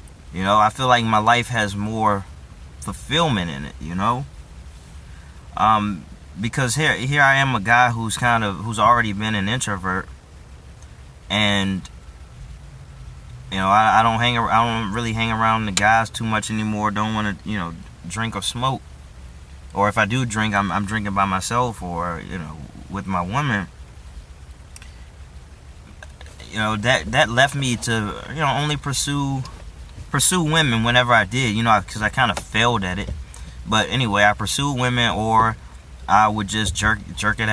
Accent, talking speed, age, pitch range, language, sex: American, 175 wpm, 20-39, 75-115 Hz, English, male